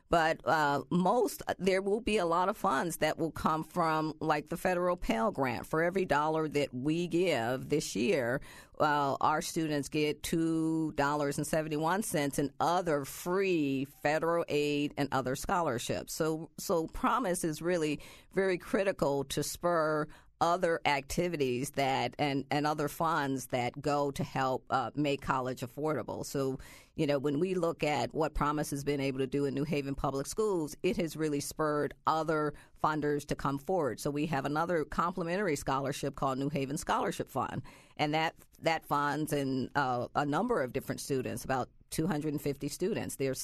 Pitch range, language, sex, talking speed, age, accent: 140-165 Hz, English, female, 165 wpm, 50-69, American